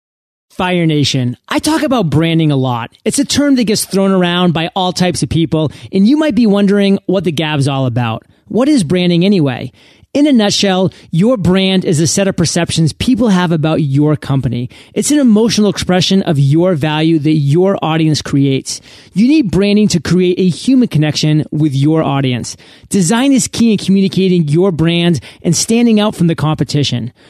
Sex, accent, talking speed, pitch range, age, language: male, American, 185 wpm, 150-205 Hz, 30-49, English